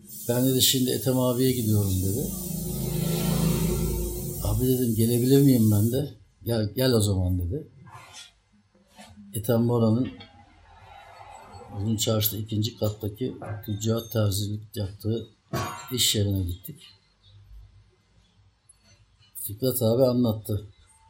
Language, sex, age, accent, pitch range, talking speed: Turkish, male, 60-79, native, 100-125 Hz, 90 wpm